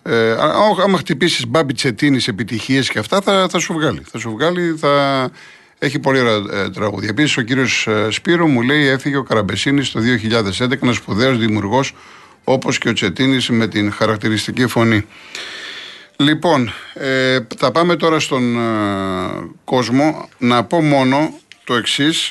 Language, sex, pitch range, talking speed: Greek, male, 115-150 Hz, 145 wpm